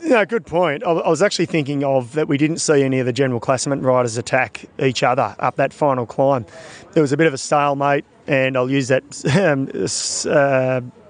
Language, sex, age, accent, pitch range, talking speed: English, male, 30-49, Australian, 140-170 Hz, 210 wpm